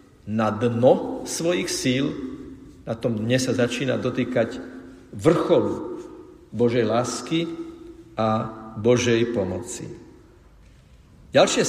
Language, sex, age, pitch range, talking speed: Slovak, male, 50-69, 115-150 Hz, 85 wpm